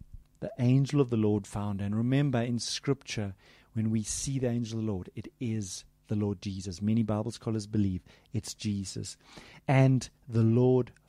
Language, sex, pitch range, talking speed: English, male, 95-125 Hz, 180 wpm